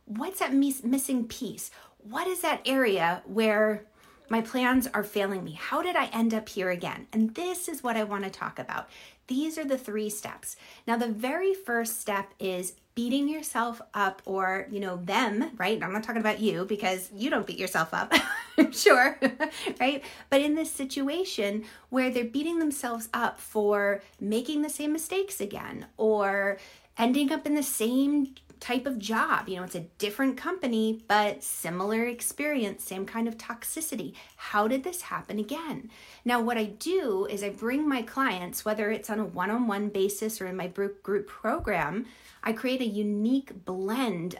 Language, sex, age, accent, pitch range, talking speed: English, female, 30-49, American, 205-270 Hz, 175 wpm